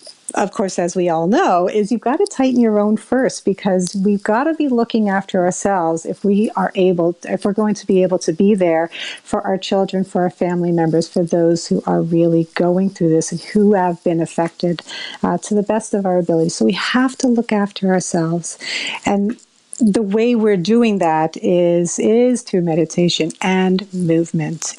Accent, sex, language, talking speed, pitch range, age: American, female, English, 200 wpm, 175-215 Hz, 50-69